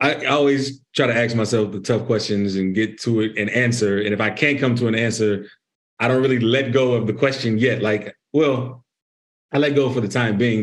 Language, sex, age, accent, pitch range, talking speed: English, male, 30-49, American, 105-125 Hz, 230 wpm